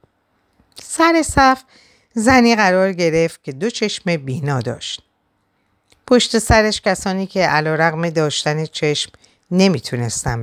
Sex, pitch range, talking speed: female, 125-205 Hz, 110 wpm